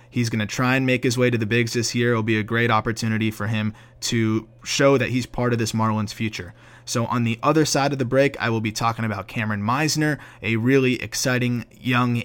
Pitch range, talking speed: 115-140 Hz, 235 wpm